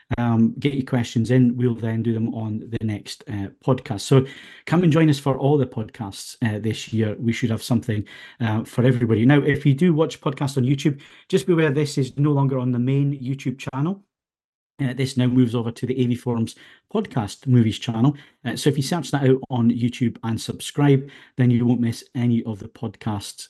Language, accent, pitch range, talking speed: English, British, 115-145 Hz, 215 wpm